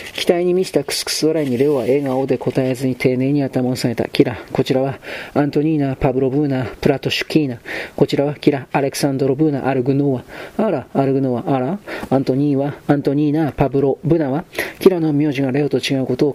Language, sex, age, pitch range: Japanese, male, 40-59, 130-150 Hz